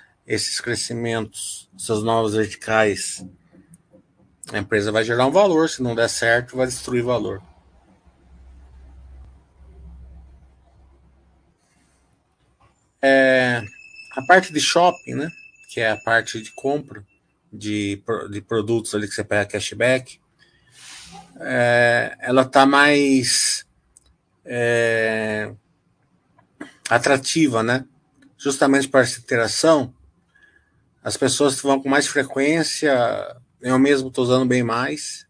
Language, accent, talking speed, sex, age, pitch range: Portuguese, Brazilian, 105 wpm, male, 50-69, 105-130 Hz